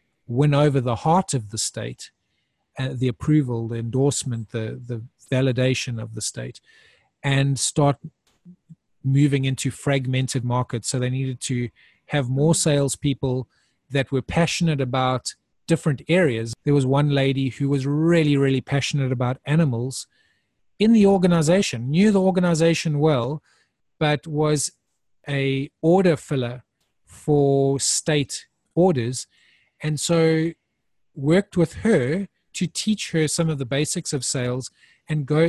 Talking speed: 135 wpm